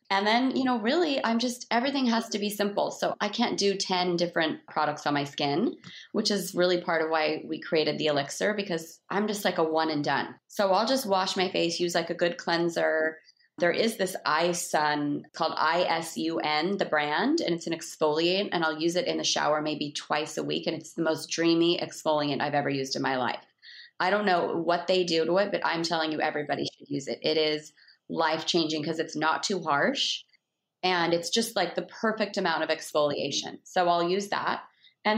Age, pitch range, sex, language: 30-49, 160-205 Hz, female, English